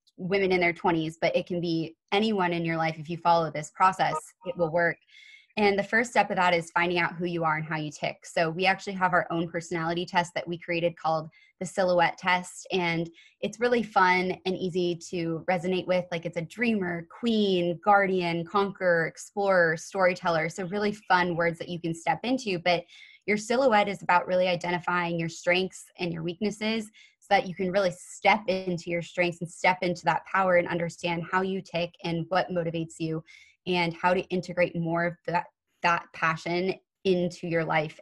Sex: female